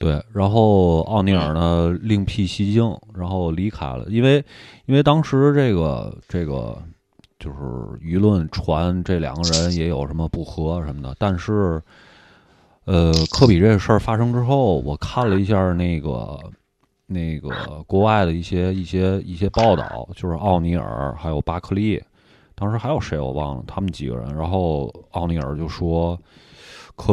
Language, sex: Chinese, male